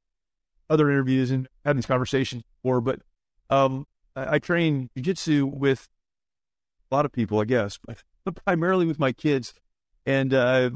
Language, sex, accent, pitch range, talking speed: English, male, American, 130-160 Hz, 155 wpm